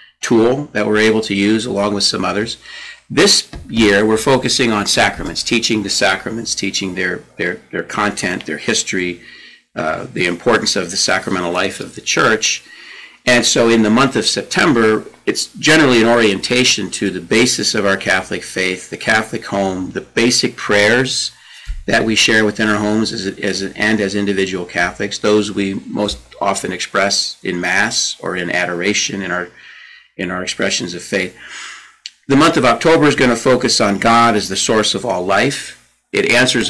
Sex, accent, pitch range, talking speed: male, American, 100-120 Hz, 175 wpm